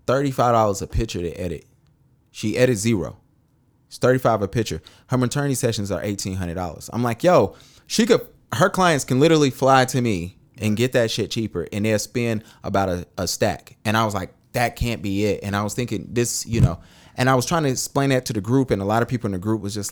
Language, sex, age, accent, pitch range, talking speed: English, male, 20-39, American, 95-125 Hz, 230 wpm